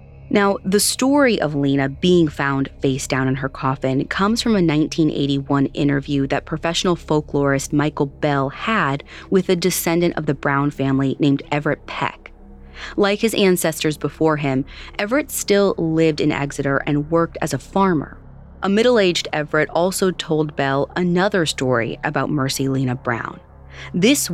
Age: 30-49